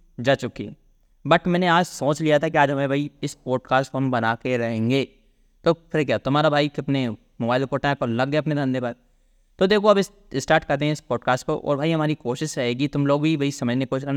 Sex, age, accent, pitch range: male, 20-39, native, 130-165 Hz